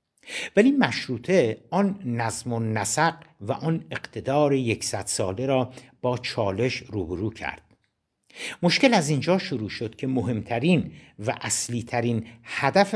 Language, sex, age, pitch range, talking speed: Persian, male, 60-79, 110-150 Hz, 125 wpm